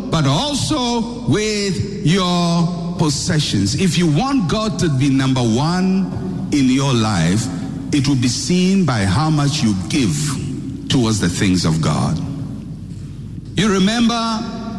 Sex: male